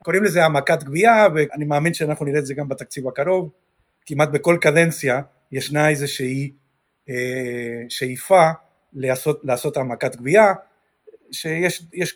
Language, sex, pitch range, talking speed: Hebrew, male, 140-180 Hz, 120 wpm